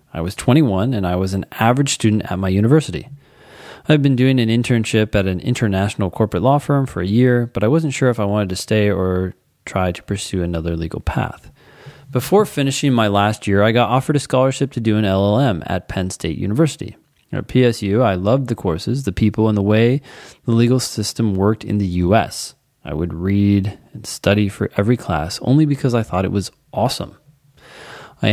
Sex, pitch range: male, 95-125 Hz